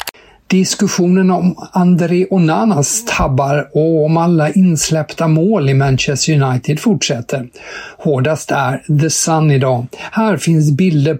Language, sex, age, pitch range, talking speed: Swedish, male, 60-79, 130-170 Hz, 120 wpm